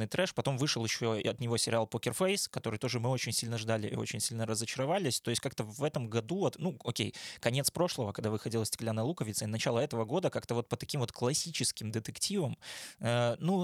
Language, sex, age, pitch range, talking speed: Russian, male, 20-39, 115-135 Hz, 195 wpm